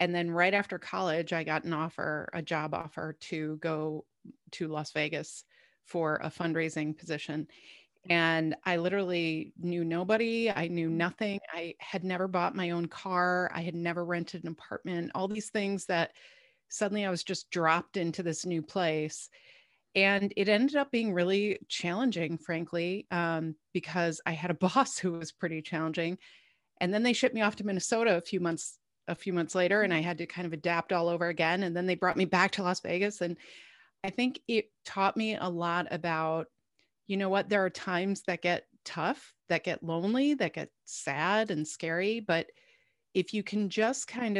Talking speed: 190 wpm